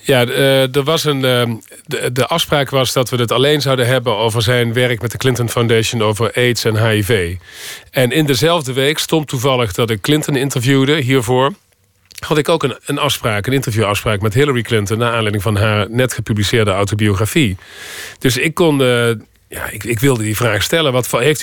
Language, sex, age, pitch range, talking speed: Dutch, male, 40-59, 115-140 Hz, 185 wpm